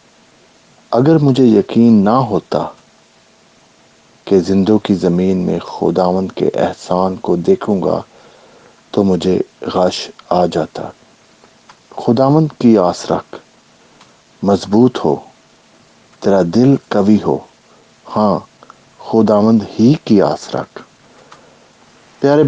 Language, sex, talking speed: English, male, 95 wpm